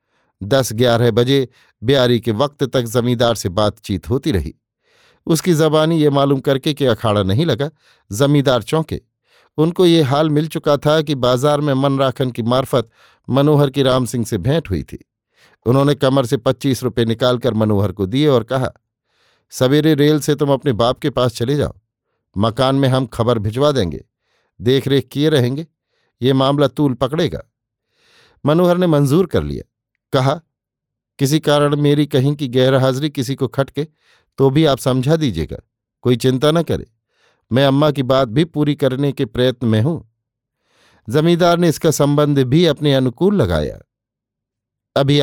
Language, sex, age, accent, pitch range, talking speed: Hindi, male, 50-69, native, 120-145 Hz, 160 wpm